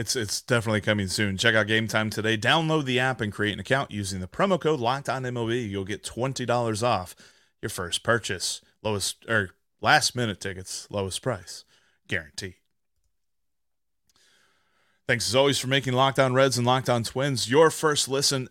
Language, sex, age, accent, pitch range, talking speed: English, male, 30-49, American, 110-155 Hz, 160 wpm